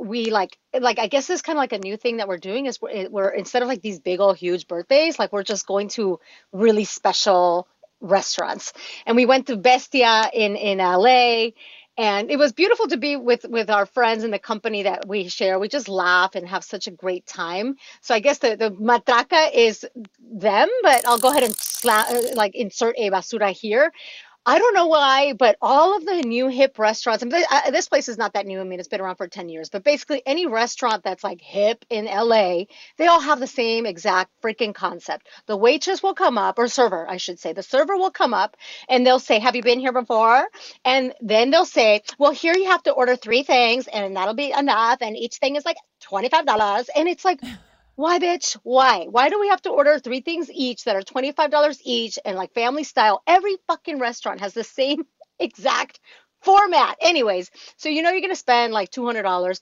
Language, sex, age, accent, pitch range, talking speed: English, female, 30-49, American, 205-285 Hz, 220 wpm